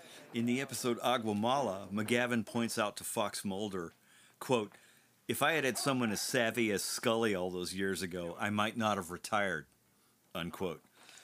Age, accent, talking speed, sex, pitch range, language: 50-69, American, 160 wpm, male, 100-135 Hz, English